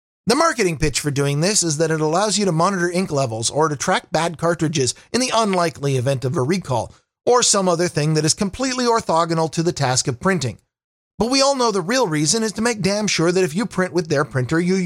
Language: English